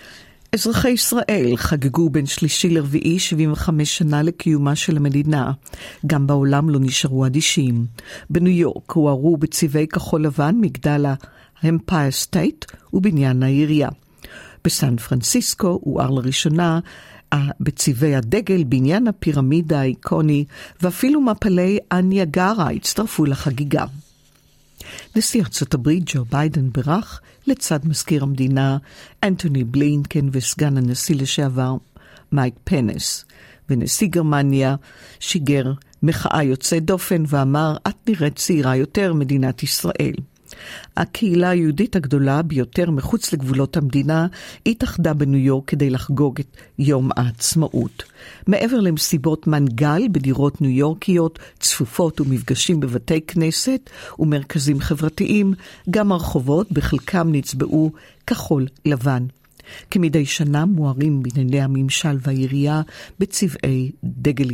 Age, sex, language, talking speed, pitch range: 50-69, female, Hebrew, 105 wpm, 140-175 Hz